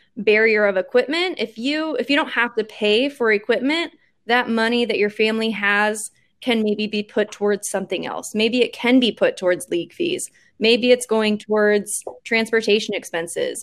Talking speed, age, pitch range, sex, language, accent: 175 wpm, 20-39, 200-235 Hz, female, English, American